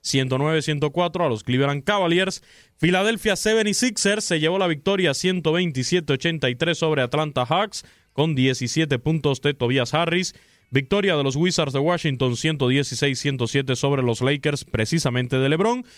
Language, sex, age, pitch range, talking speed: Spanish, male, 20-39, 130-175 Hz, 125 wpm